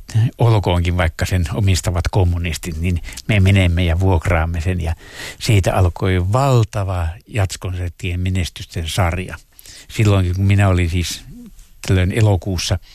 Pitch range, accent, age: 90-100 Hz, native, 60-79